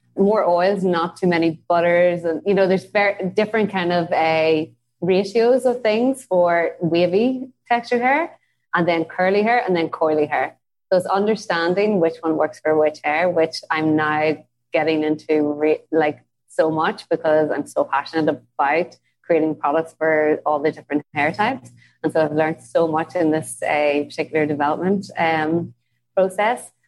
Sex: female